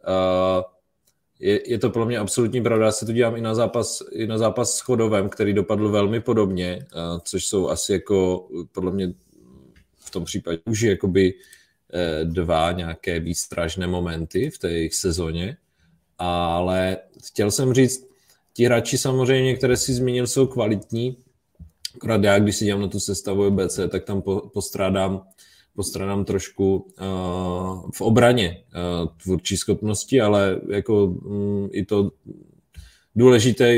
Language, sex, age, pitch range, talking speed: Czech, male, 30-49, 90-110 Hz, 130 wpm